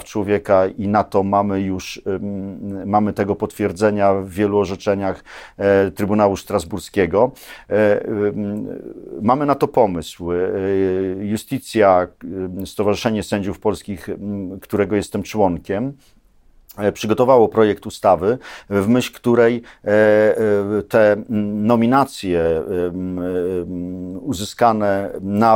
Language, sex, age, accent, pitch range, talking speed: Polish, male, 50-69, native, 100-130 Hz, 80 wpm